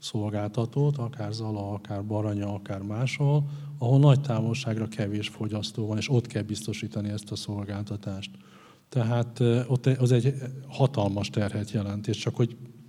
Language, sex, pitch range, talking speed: Hungarian, male, 105-125 Hz, 140 wpm